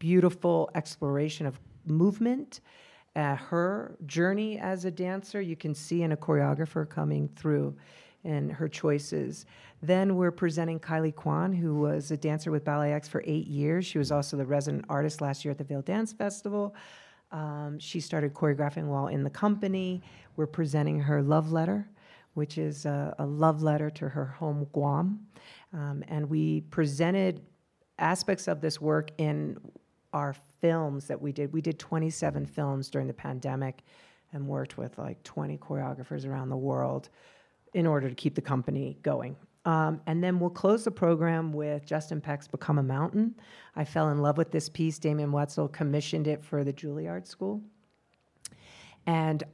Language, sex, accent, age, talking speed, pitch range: English, female, American, 50-69, 165 wpm, 145-170 Hz